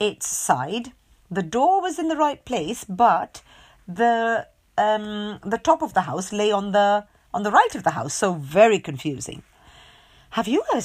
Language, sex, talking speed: English, female, 175 wpm